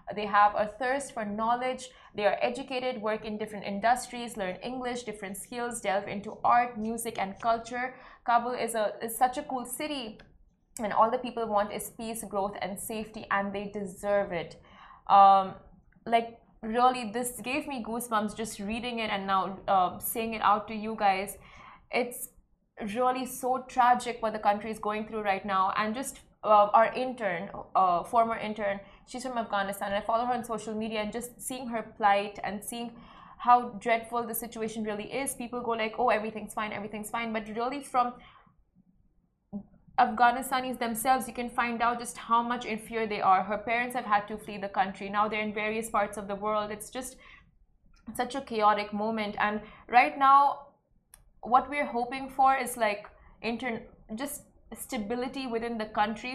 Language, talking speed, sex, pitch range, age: Arabic, 175 wpm, female, 210-245 Hz, 20-39